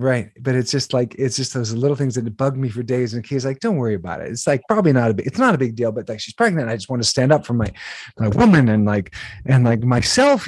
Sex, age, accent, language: male, 30-49, American, English